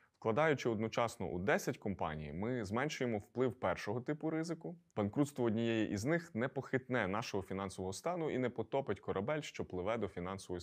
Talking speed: 160 wpm